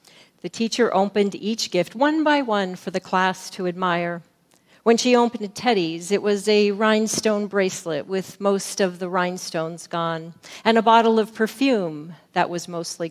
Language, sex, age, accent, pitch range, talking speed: English, female, 40-59, American, 175-215 Hz, 165 wpm